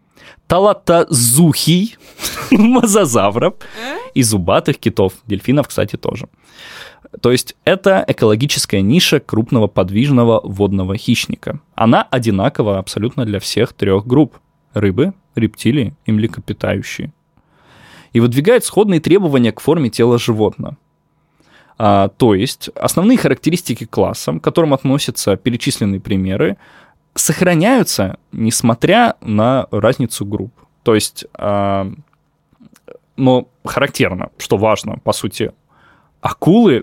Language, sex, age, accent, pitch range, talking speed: Russian, male, 20-39, native, 105-150 Hz, 105 wpm